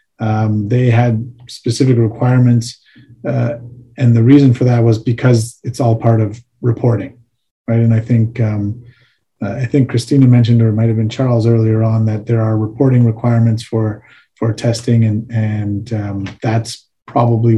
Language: English